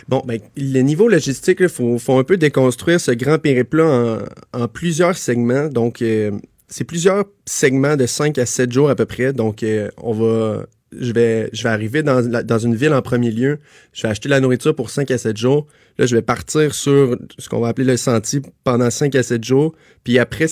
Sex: male